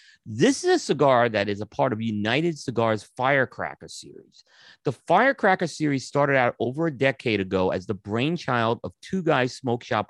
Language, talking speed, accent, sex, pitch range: English, 180 wpm, American, male, 115-155 Hz